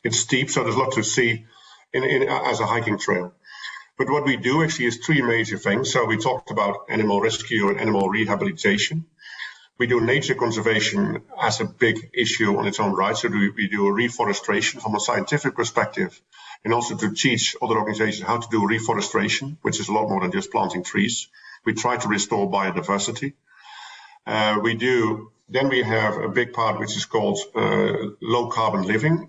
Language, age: English, 50-69